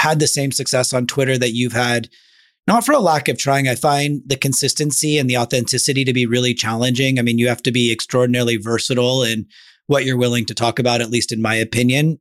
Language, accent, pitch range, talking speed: English, American, 120-140 Hz, 225 wpm